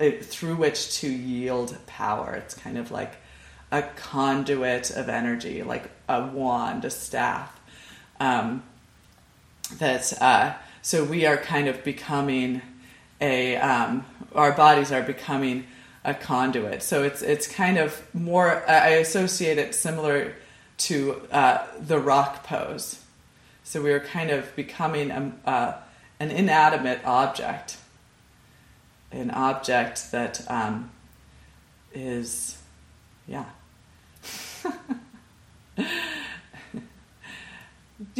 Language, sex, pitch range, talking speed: English, female, 130-165 Hz, 105 wpm